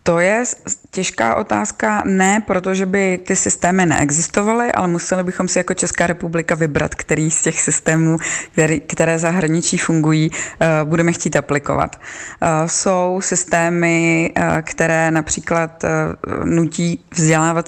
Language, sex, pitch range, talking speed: Czech, female, 155-175 Hz, 115 wpm